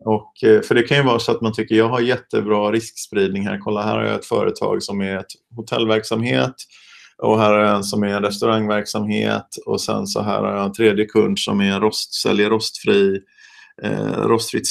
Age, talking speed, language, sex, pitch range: 30-49, 205 wpm, Swedish, male, 105-120 Hz